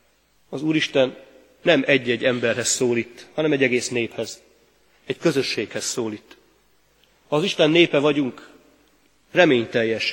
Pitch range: 120-150 Hz